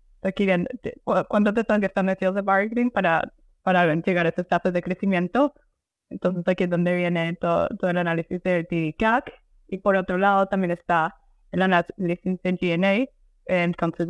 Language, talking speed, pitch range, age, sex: Spanish, 180 wpm, 175-200 Hz, 20-39, female